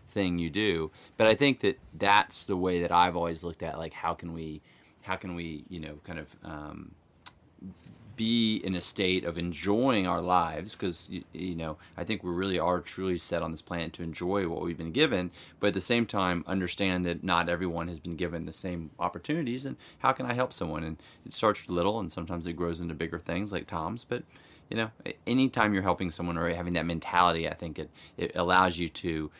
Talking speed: 220 wpm